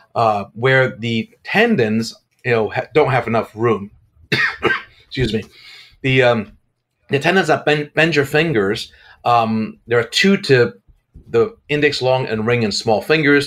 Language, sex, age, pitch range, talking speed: English, male, 40-59, 115-145 Hz, 150 wpm